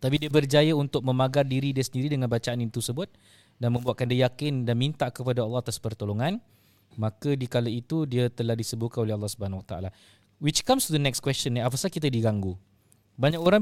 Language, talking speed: Malay, 195 wpm